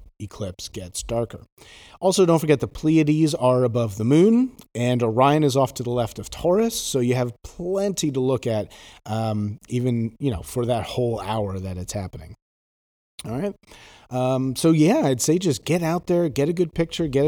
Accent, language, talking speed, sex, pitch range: American, English, 190 wpm, male, 105-150 Hz